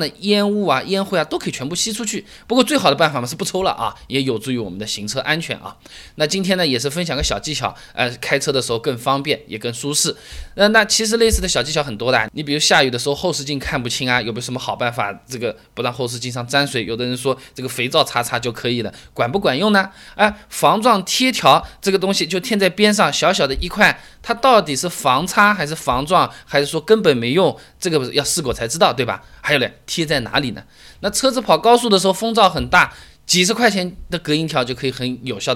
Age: 20-39